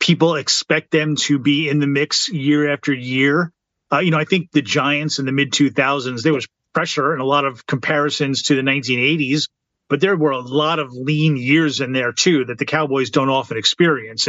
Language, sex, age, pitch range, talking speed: English, male, 30-49, 135-155 Hz, 210 wpm